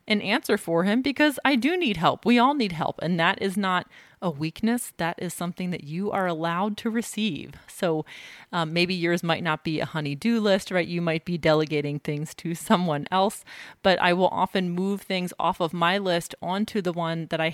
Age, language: 30-49, English